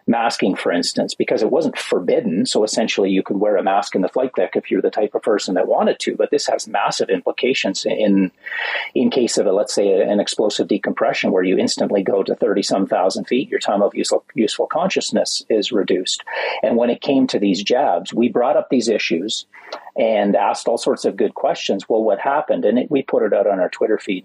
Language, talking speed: English, 225 wpm